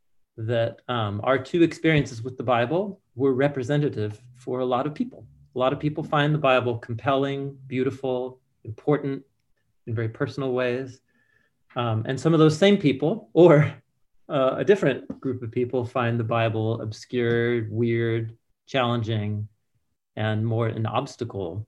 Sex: male